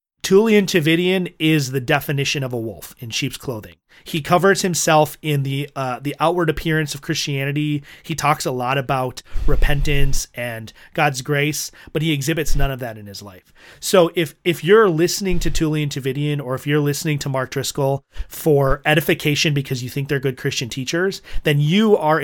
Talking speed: 180 wpm